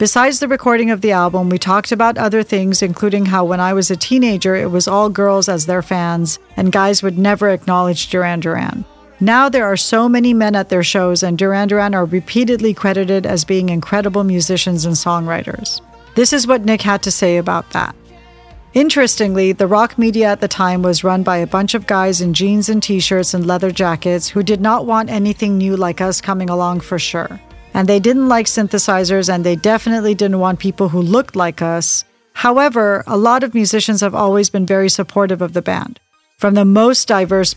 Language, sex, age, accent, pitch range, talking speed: English, female, 40-59, American, 185-215 Hz, 205 wpm